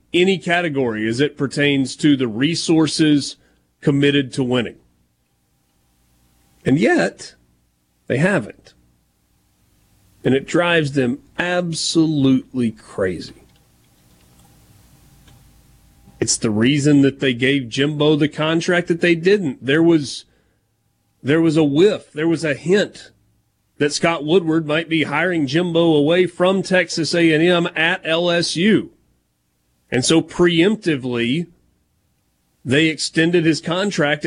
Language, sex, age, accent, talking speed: English, male, 40-59, American, 110 wpm